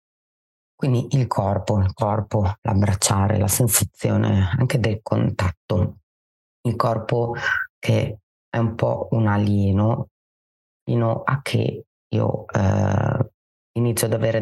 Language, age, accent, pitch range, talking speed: Italian, 30-49, native, 100-115 Hz, 110 wpm